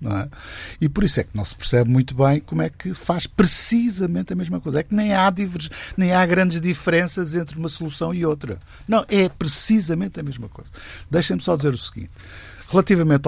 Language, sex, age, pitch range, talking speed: Portuguese, male, 50-69, 100-155 Hz, 210 wpm